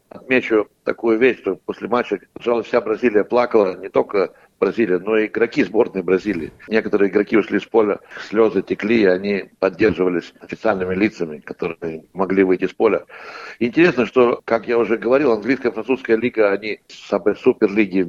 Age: 60-79